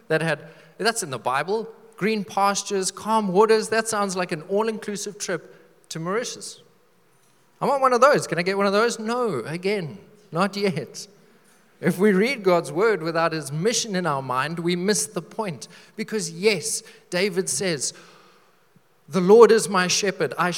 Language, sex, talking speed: English, male, 170 wpm